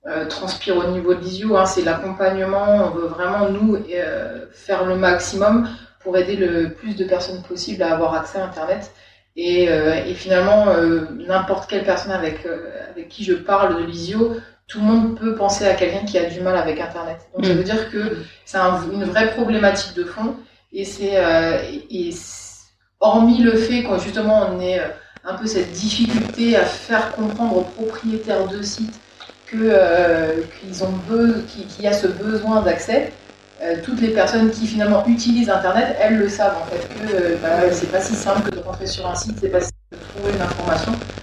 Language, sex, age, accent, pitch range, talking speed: French, female, 30-49, French, 180-215 Hz, 200 wpm